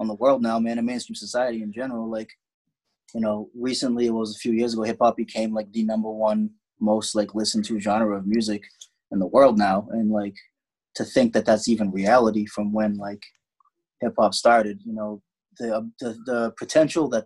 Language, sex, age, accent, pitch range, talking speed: English, male, 20-39, American, 105-120 Hz, 200 wpm